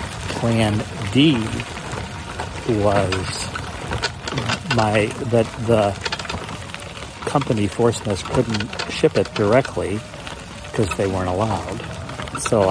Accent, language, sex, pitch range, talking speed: American, English, male, 95-115 Hz, 80 wpm